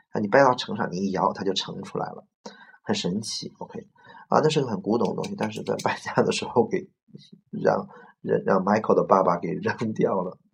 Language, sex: Chinese, male